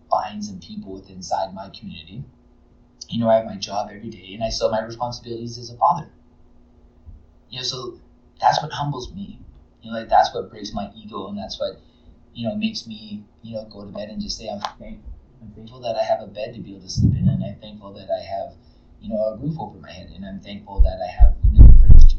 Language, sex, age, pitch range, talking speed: English, male, 20-39, 90-125 Hz, 250 wpm